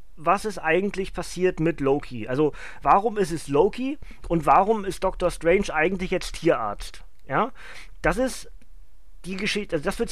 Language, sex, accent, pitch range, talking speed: German, male, German, 160-210 Hz, 160 wpm